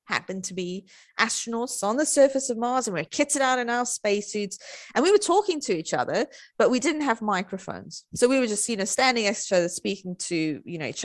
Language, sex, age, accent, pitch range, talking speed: English, female, 20-39, British, 195-285 Hz, 245 wpm